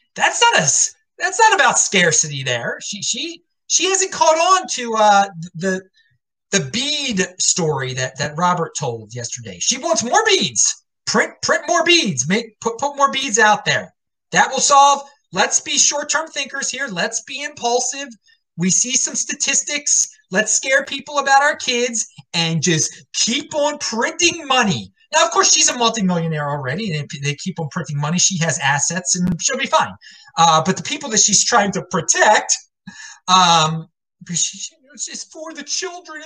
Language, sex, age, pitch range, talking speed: English, male, 30-49, 175-285 Hz, 170 wpm